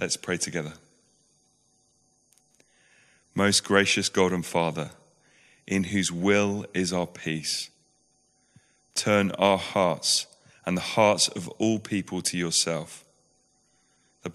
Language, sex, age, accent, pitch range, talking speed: English, male, 30-49, British, 85-100 Hz, 110 wpm